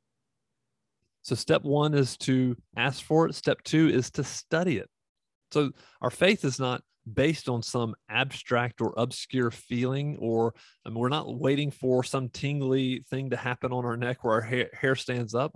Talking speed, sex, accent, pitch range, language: 170 wpm, male, American, 115-140 Hz, English